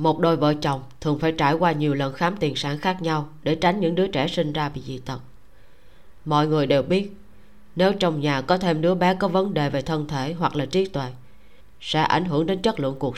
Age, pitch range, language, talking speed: 20-39, 130-165 Hz, Vietnamese, 240 wpm